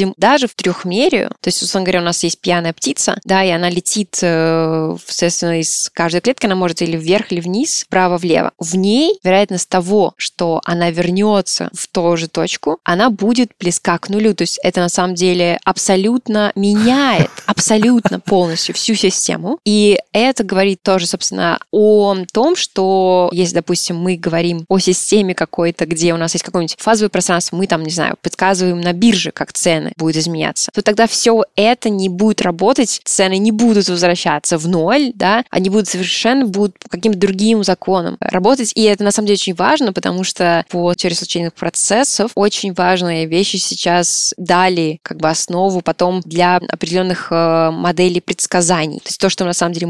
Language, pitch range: Russian, 170-205 Hz